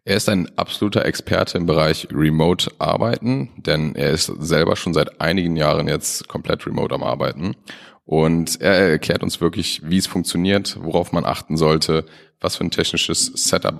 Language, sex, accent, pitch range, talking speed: German, male, German, 80-95 Hz, 165 wpm